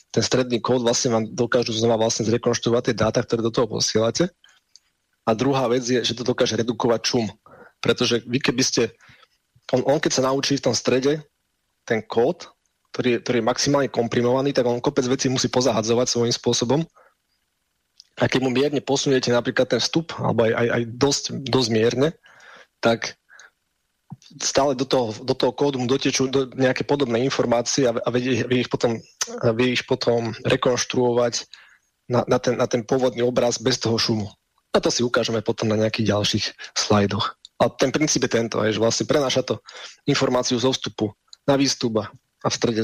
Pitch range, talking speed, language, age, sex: 115-130 Hz, 175 wpm, Slovak, 20-39, male